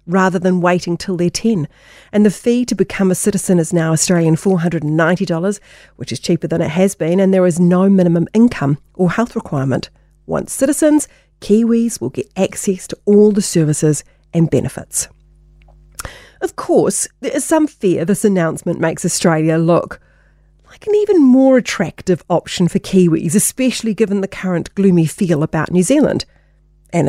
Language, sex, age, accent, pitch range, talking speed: English, female, 40-59, Australian, 170-215 Hz, 165 wpm